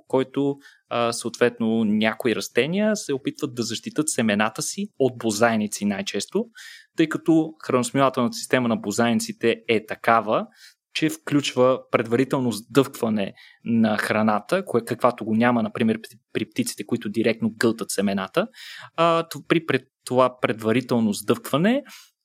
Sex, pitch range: male, 115-155 Hz